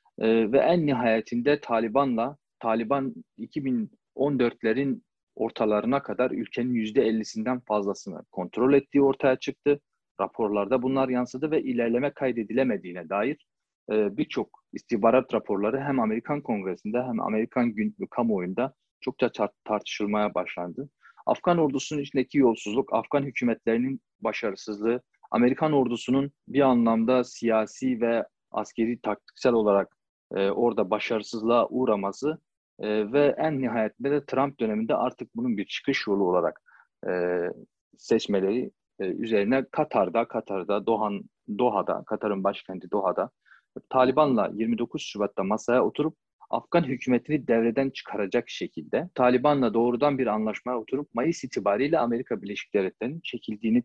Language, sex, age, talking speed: Turkish, male, 40-59, 110 wpm